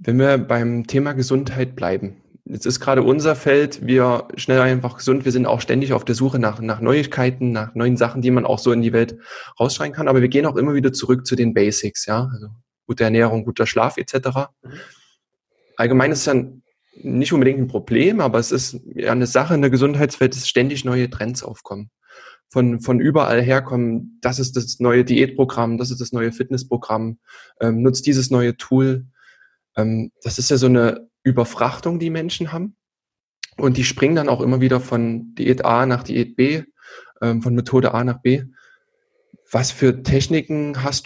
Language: German